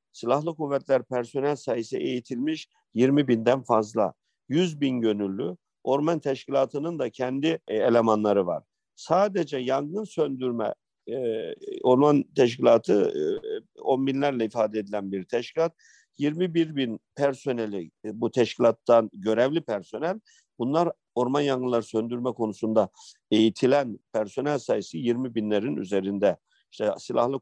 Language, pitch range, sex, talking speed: Turkish, 115-165 Hz, male, 110 wpm